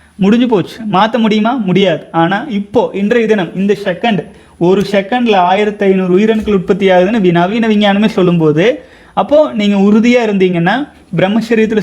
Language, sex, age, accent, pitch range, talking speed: Tamil, male, 30-49, native, 180-220 Hz, 125 wpm